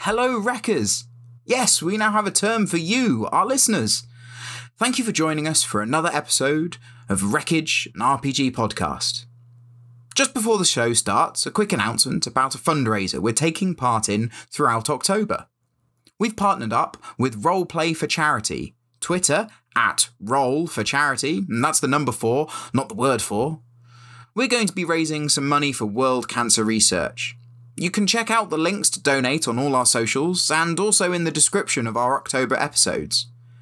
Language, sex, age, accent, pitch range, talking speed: English, male, 20-39, British, 120-190 Hz, 170 wpm